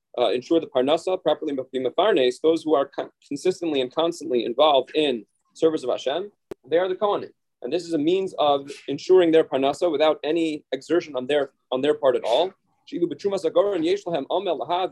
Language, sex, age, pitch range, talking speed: English, male, 30-49, 135-180 Hz, 195 wpm